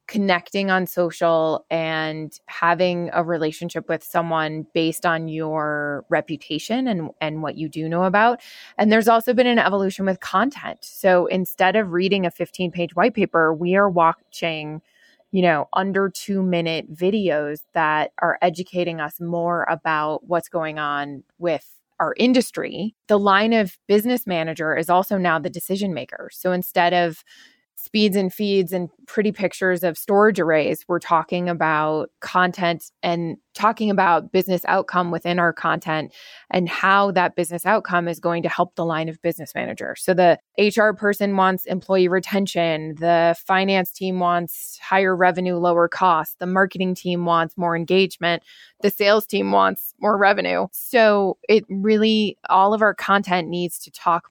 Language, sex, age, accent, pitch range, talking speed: English, female, 20-39, American, 165-200 Hz, 160 wpm